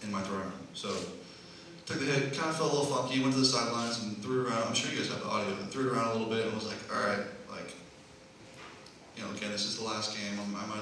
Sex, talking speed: male, 290 wpm